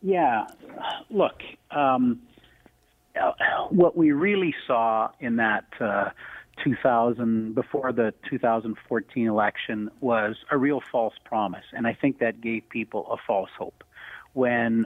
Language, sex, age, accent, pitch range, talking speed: English, male, 40-59, American, 115-145 Hz, 120 wpm